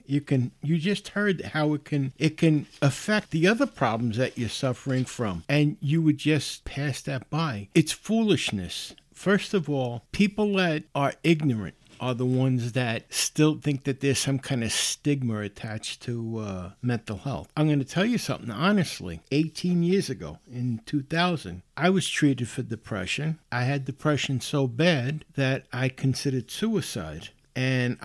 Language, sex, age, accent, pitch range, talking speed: English, male, 60-79, American, 120-155 Hz, 165 wpm